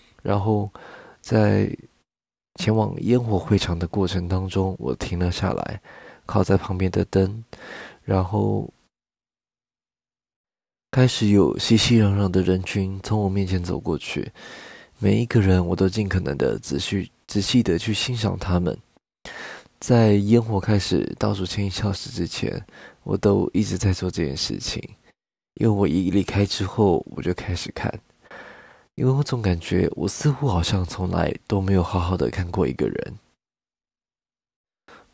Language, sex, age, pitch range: Chinese, male, 20-39, 90-110 Hz